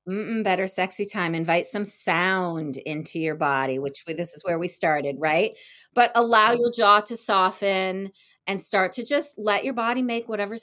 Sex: female